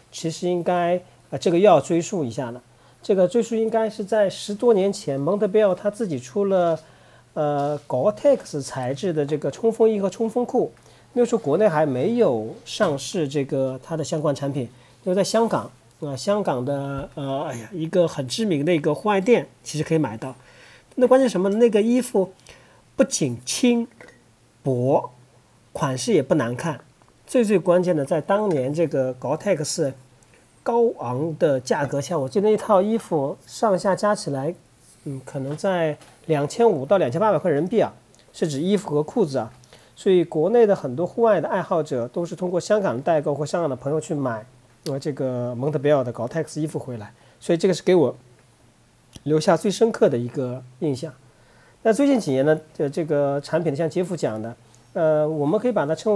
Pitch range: 135-200 Hz